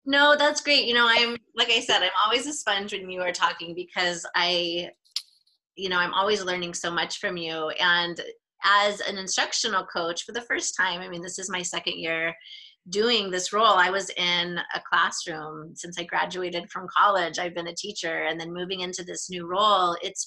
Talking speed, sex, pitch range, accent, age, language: 205 wpm, female, 175-230 Hz, American, 30-49, English